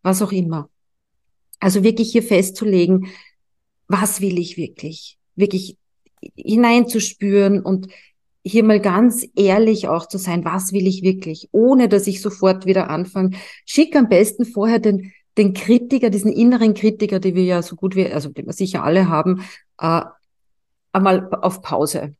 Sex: female